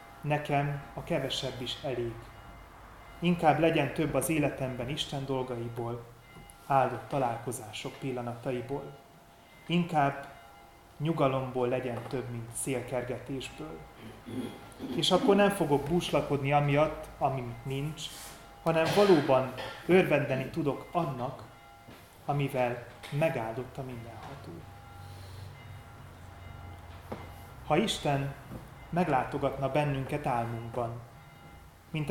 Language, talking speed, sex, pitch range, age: Hungarian, 80 wpm, male, 120-145 Hz, 30-49